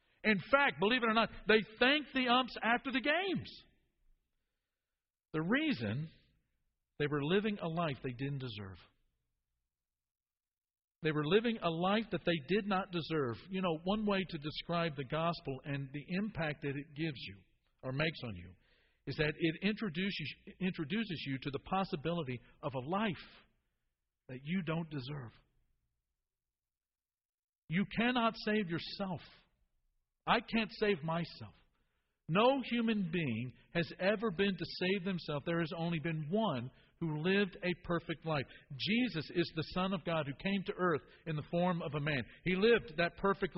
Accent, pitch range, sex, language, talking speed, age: American, 140-200 Hz, male, English, 160 wpm, 50-69